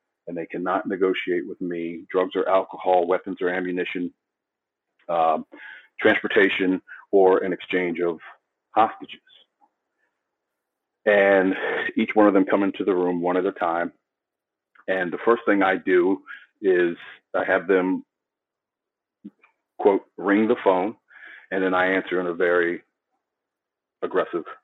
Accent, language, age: American, English, 40-59